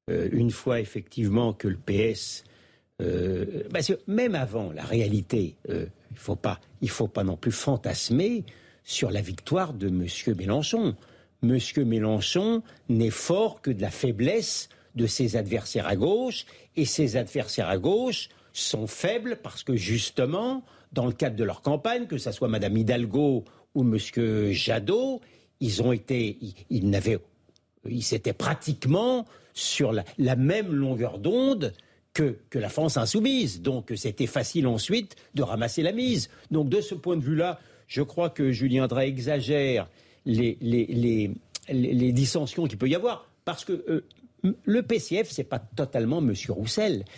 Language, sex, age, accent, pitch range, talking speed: French, male, 60-79, French, 115-160 Hz, 160 wpm